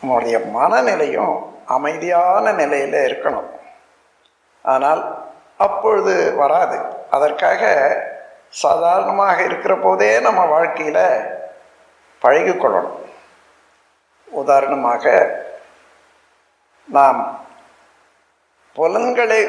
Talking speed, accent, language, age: 55 wpm, native, Tamil, 60-79